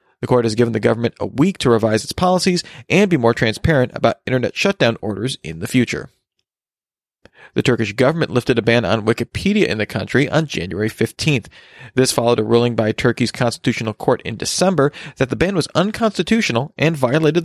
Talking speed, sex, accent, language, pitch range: 185 wpm, male, American, English, 115-150 Hz